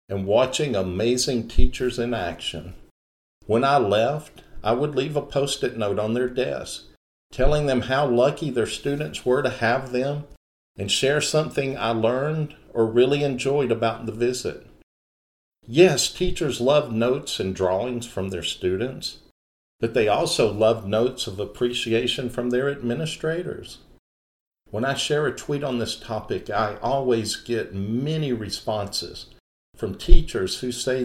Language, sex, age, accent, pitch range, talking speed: English, male, 50-69, American, 105-135 Hz, 145 wpm